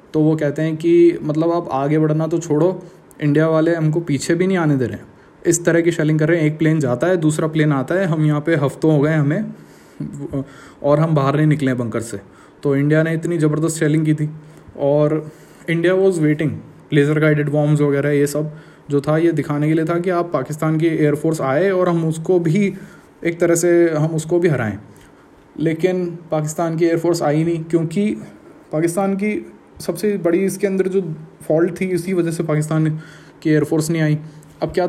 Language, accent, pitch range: Hindi, native, 150-175 Hz